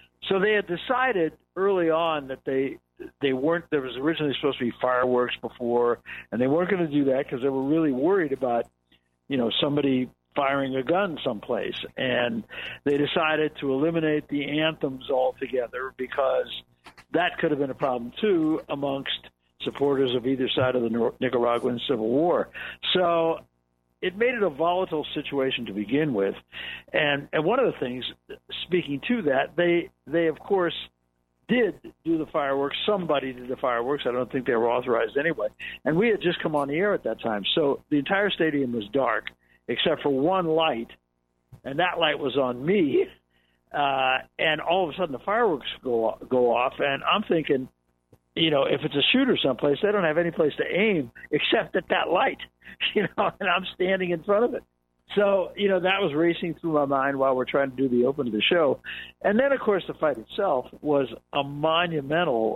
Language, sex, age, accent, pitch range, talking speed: English, male, 60-79, American, 120-165 Hz, 195 wpm